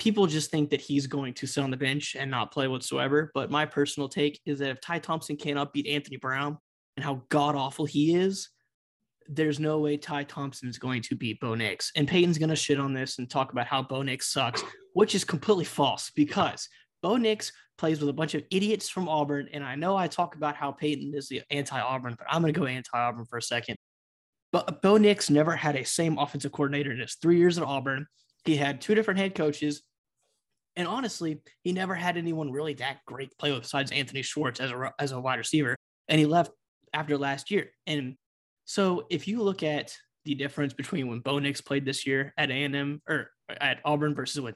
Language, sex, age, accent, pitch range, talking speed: English, male, 20-39, American, 135-170 Hz, 220 wpm